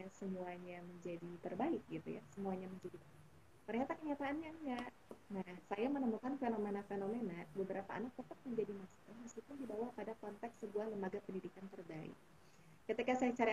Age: 20-39